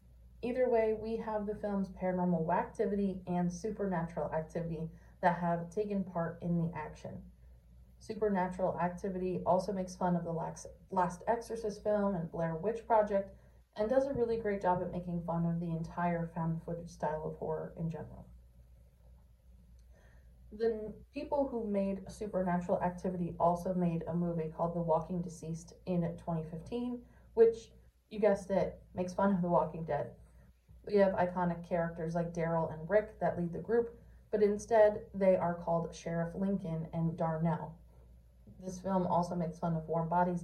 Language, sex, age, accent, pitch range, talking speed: English, female, 30-49, American, 165-195 Hz, 155 wpm